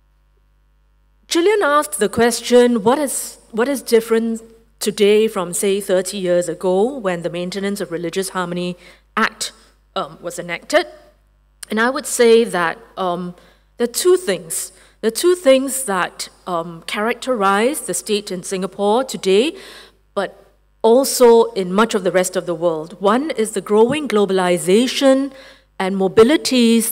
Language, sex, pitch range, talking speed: English, female, 180-230 Hz, 145 wpm